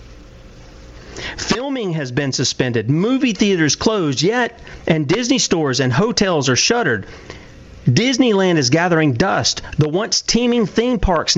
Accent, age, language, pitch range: American, 40-59, English, 140-200 Hz